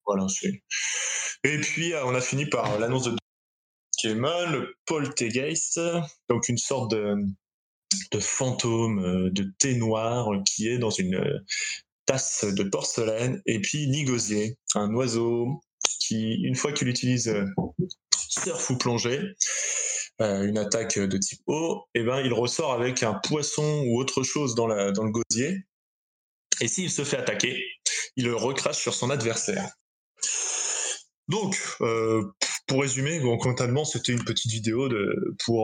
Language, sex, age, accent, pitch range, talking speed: French, male, 20-39, French, 110-135 Hz, 145 wpm